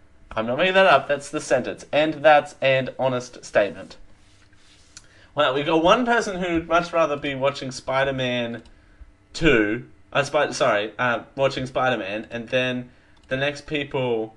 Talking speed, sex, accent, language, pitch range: 155 wpm, male, Australian, English, 110-145 Hz